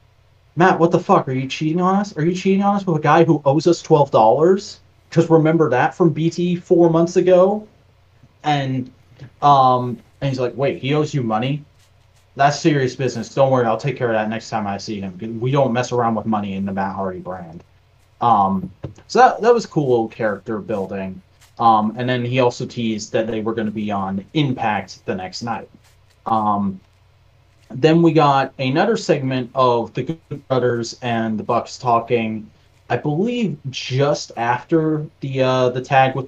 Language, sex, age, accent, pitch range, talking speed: English, male, 30-49, American, 115-165 Hz, 190 wpm